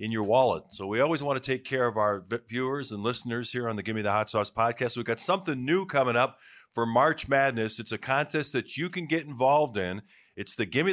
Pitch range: 110-145 Hz